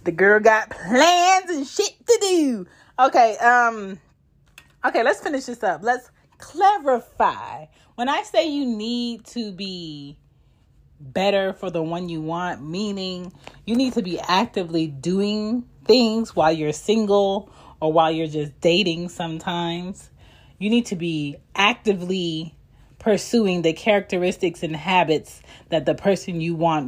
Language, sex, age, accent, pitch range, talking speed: English, female, 30-49, American, 160-230 Hz, 140 wpm